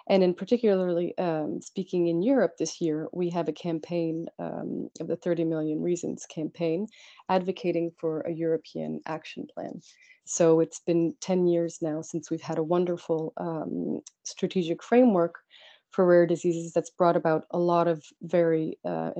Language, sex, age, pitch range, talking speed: English, female, 30-49, 160-185 Hz, 160 wpm